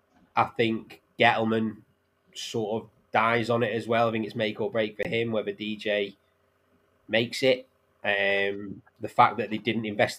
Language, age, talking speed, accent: English, 20-39, 170 wpm, British